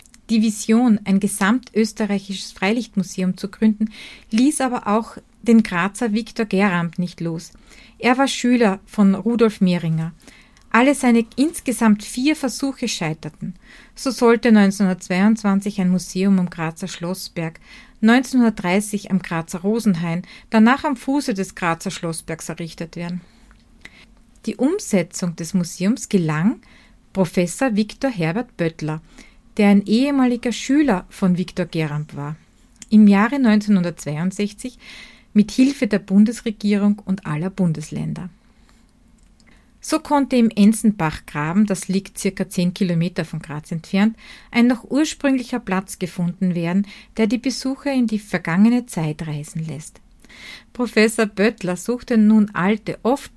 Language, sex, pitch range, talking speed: German, female, 180-235 Hz, 125 wpm